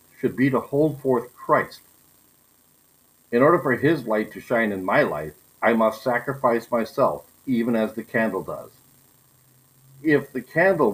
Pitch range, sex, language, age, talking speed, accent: 110-135 Hz, male, English, 60-79, 155 wpm, American